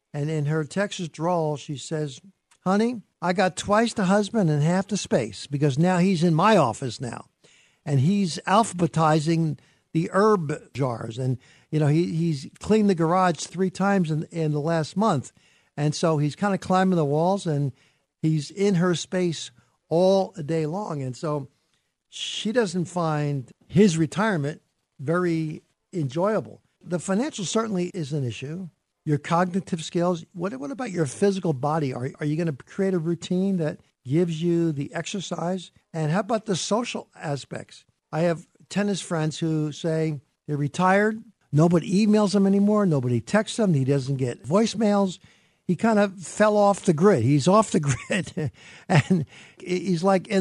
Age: 60-79